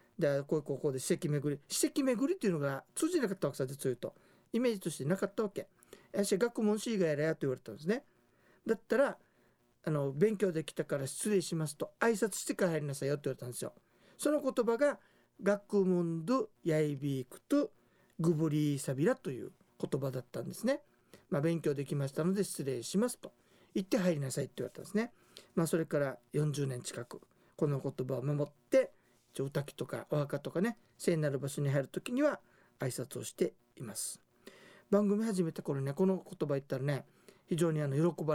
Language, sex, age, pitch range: Japanese, male, 50-69, 145-195 Hz